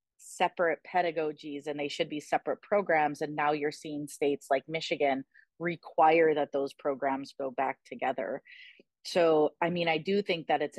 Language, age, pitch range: English, 30-49, 145-165 Hz